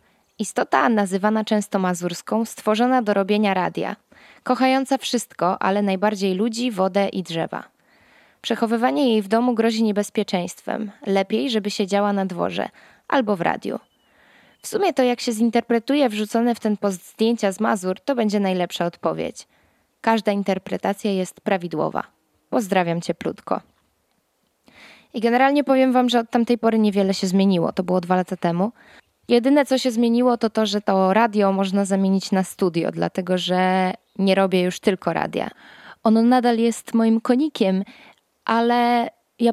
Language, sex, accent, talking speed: Polish, female, native, 150 wpm